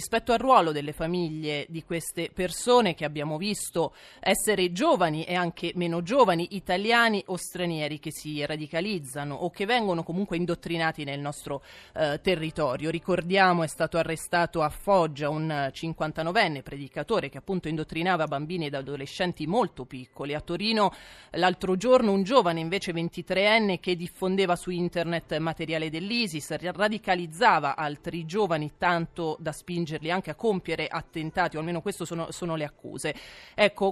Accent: native